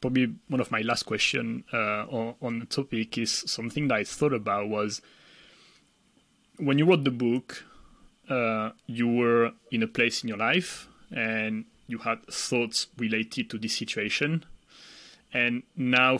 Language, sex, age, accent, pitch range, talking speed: English, male, 30-49, French, 115-140 Hz, 155 wpm